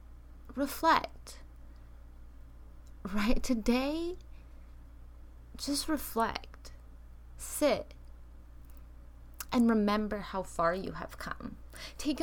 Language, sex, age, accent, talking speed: English, female, 20-39, American, 70 wpm